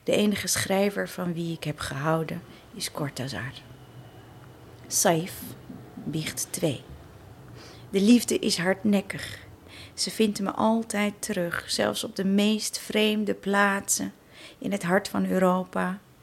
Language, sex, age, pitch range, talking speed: Dutch, female, 40-59, 160-195 Hz, 120 wpm